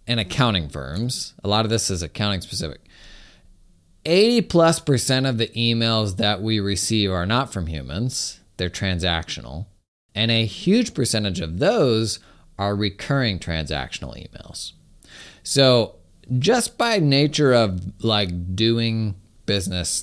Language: English